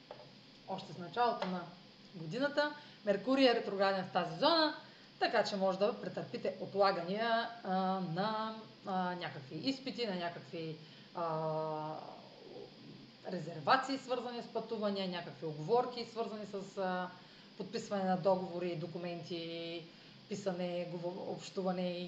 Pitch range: 185-230 Hz